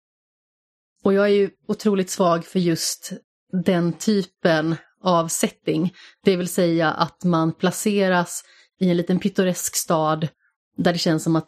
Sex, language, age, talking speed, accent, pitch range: female, Swedish, 30-49, 145 wpm, native, 170-190 Hz